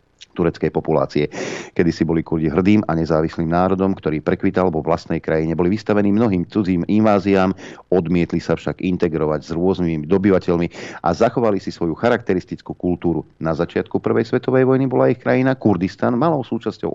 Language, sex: Slovak, male